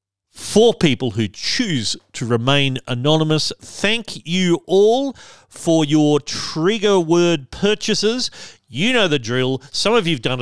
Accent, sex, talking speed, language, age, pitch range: Australian, male, 140 wpm, English, 40-59, 120-170 Hz